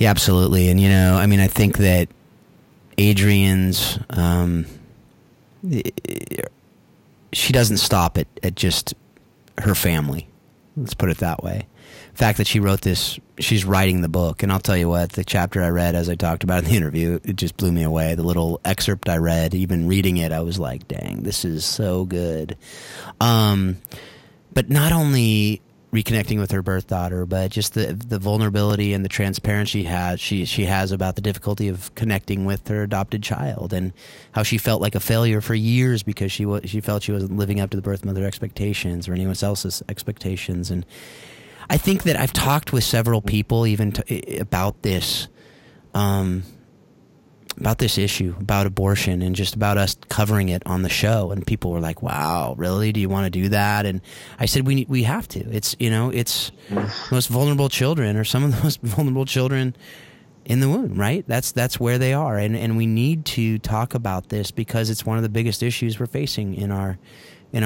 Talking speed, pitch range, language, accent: 195 wpm, 95-115 Hz, English, American